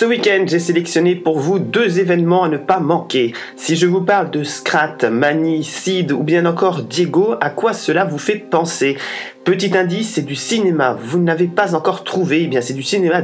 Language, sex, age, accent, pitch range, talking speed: French, male, 30-49, French, 145-175 Hz, 210 wpm